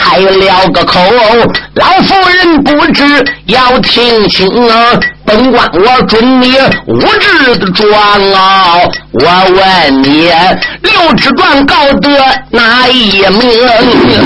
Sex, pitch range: male, 210-285 Hz